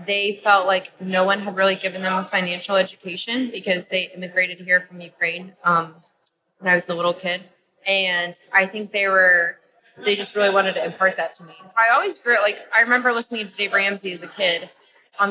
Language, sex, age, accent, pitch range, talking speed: English, female, 20-39, American, 180-215 Hz, 210 wpm